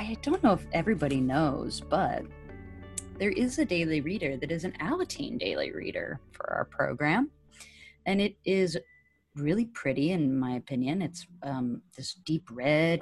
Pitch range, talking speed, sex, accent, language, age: 135-175 Hz, 155 wpm, female, American, English, 30-49